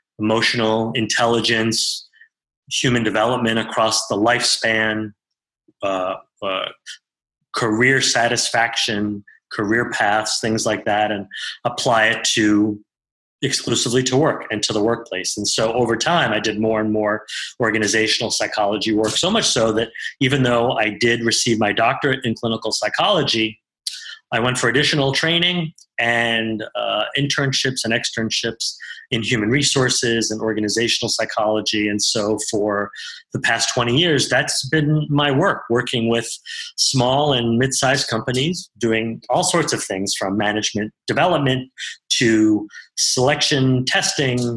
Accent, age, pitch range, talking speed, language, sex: American, 30-49, 110-130 Hz, 130 wpm, English, male